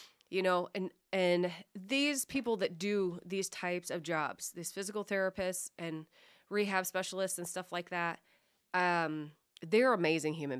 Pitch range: 155-190 Hz